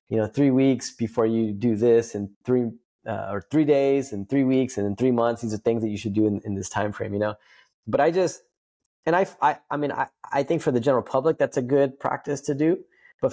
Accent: American